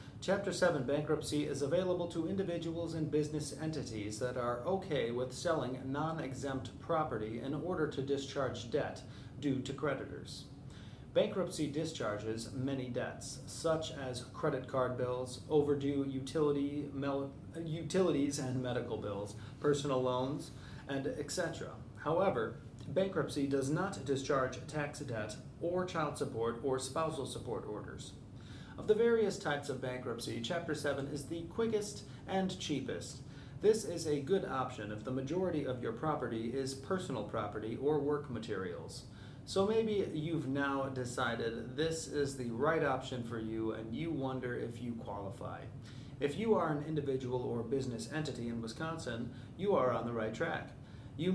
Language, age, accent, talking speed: English, 30-49, American, 145 wpm